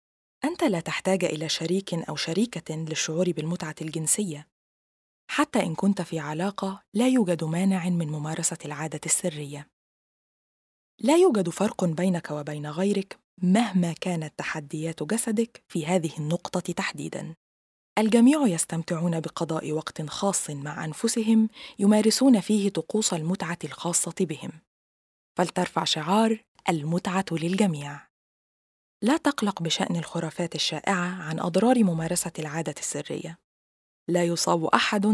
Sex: female